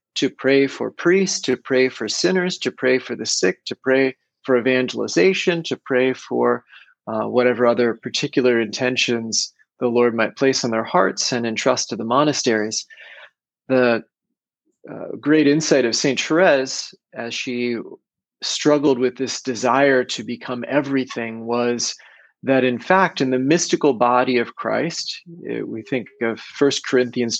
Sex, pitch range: male, 120-135 Hz